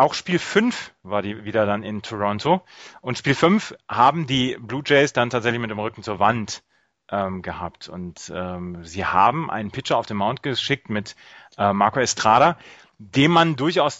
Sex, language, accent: male, German, German